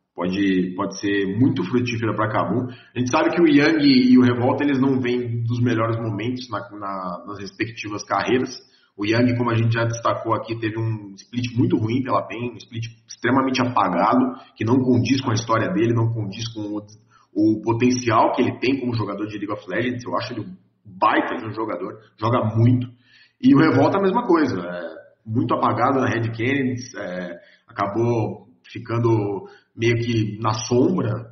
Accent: Brazilian